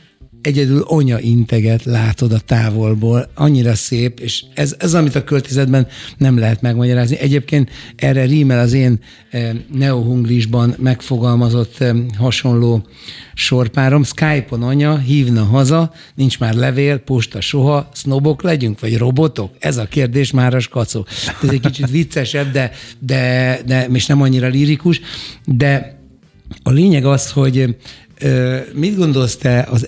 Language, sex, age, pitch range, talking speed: Hungarian, male, 60-79, 120-140 Hz, 130 wpm